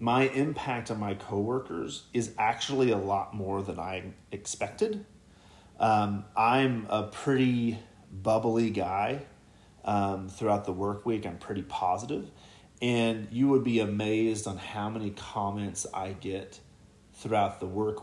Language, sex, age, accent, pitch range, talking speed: English, male, 30-49, American, 100-120 Hz, 135 wpm